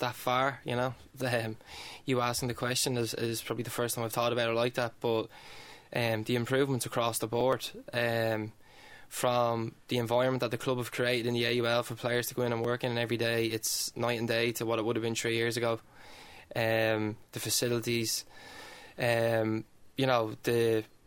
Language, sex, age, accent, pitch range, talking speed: English, male, 20-39, Irish, 115-125 Hz, 205 wpm